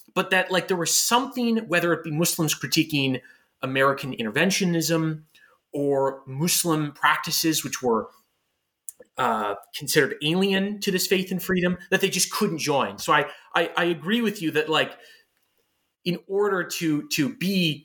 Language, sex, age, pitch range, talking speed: English, male, 30-49, 135-185 Hz, 150 wpm